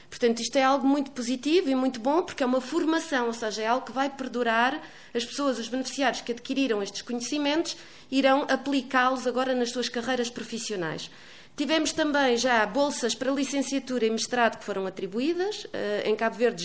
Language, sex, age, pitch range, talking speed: Portuguese, female, 20-39, 220-260 Hz, 175 wpm